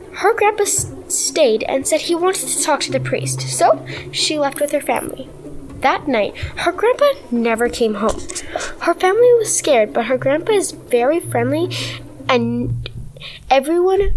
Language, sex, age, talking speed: English, female, 10-29, 160 wpm